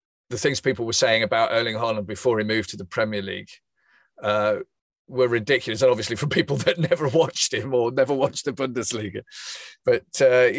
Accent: British